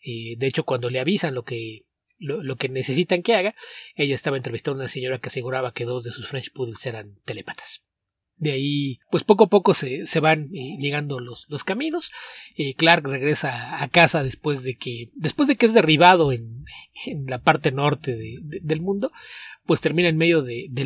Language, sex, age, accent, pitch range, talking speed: English, male, 30-49, Mexican, 125-160 Hz, 205 wpm